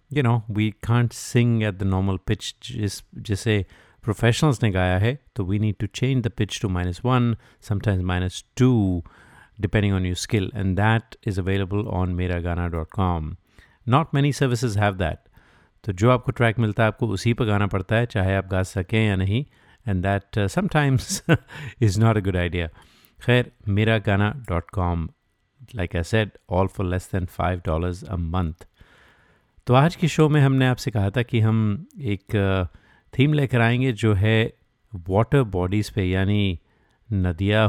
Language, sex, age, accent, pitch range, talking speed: Hindi, male, 50-69, native, 95-120 Hz, 170 wpm